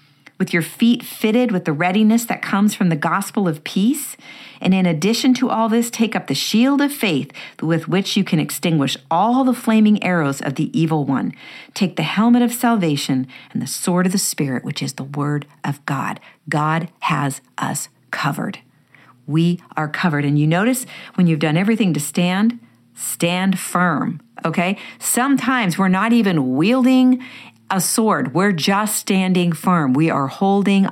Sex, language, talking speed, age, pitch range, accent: female, English, 175 wpm, 50-69, 150-200 Hz, American